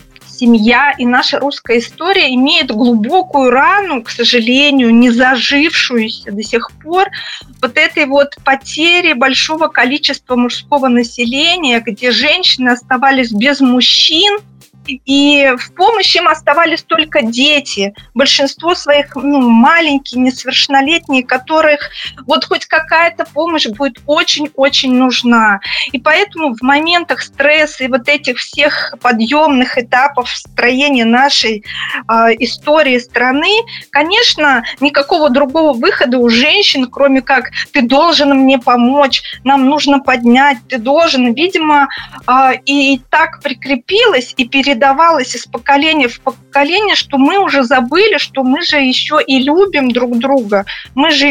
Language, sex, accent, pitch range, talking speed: Russian, female, native, 255-305 Hz, 125 wpm